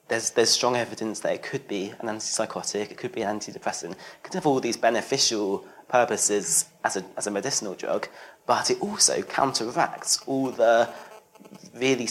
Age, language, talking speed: 30-49, English, 175 wpm